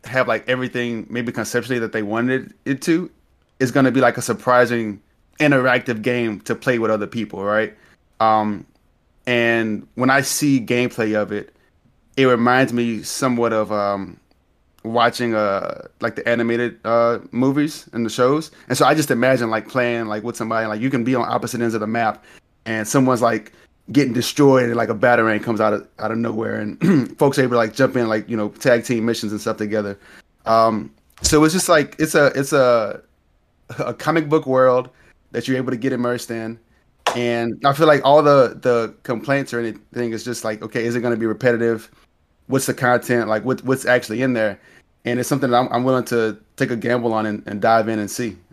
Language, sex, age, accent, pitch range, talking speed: English, male, 30-49, American, 110-130 Hz, 205 wpm